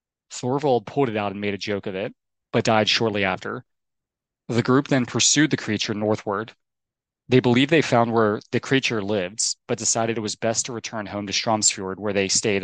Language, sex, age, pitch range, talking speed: English, male, 20-39, 100-120 Hz, 200 wpm